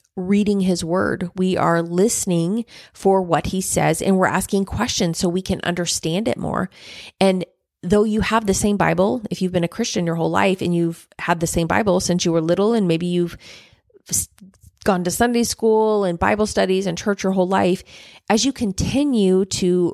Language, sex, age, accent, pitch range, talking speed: English, female, 30-49, American, 170-200 Hz, 195 wpm